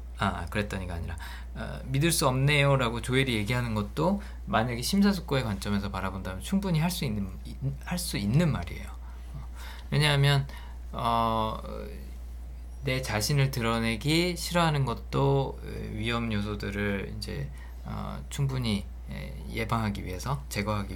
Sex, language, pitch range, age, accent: male, Korean, 80-135 Hz, 20-39, native